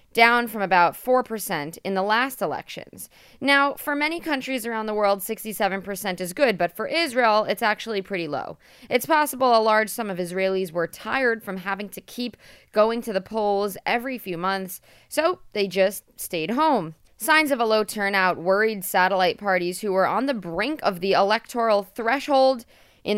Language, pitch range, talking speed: English, 190-250 Hz, 175 wpm